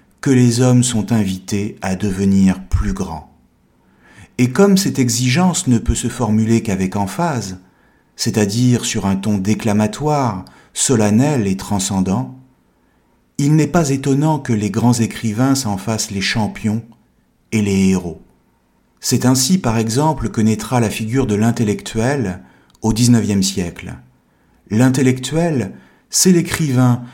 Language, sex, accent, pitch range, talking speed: French, male, French, 100-135 Hz, 130 wpm